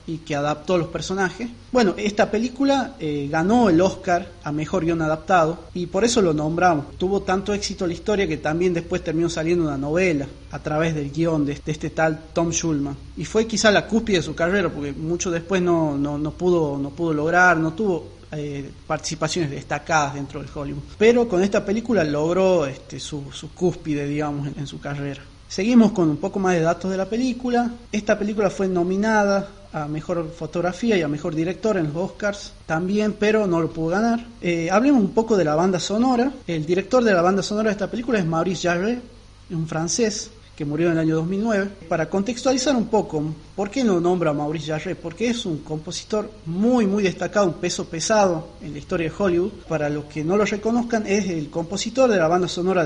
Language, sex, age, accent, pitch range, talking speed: Spanish, male, 30-49, Argentinian, 155-210 Hz, 205 wpm